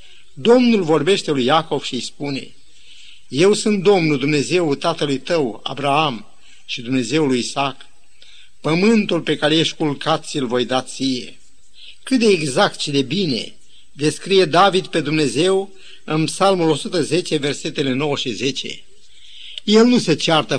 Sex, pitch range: male, 145-195 Hz